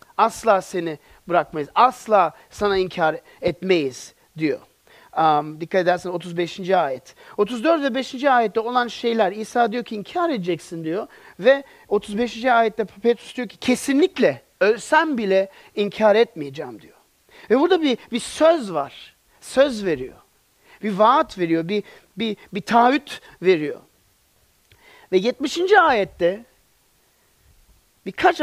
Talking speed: 120 wpm